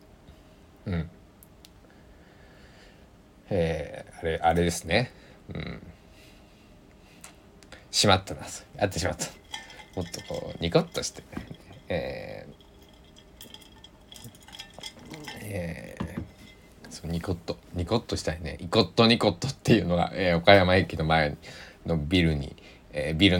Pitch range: 80-100 Hz